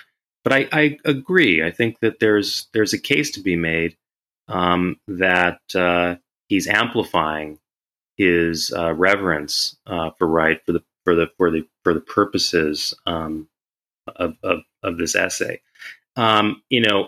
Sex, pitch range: male, 80-95 Hz